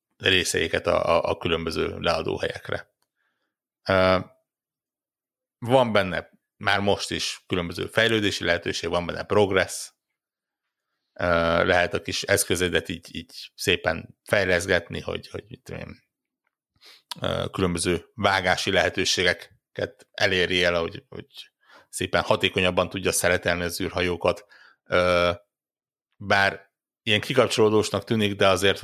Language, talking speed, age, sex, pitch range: Hungarian, 110 wpm, 60-79, male, 85-100 Hz